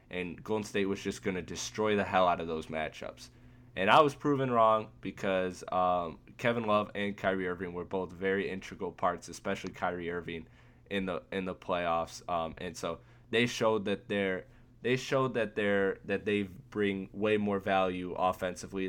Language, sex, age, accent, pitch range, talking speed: English, male, 10-29, American, 90-115 Hz, 180 wpm